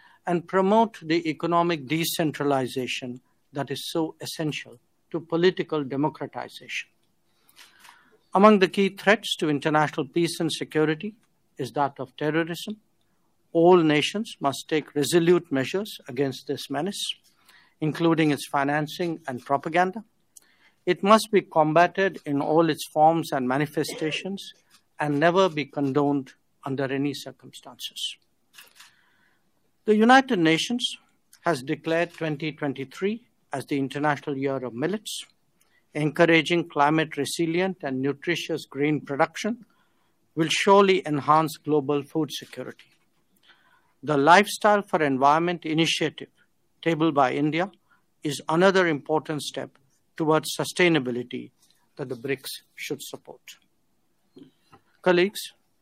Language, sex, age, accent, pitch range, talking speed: English, male, 60-79, Indian, 145-180 Hz, 110 wpm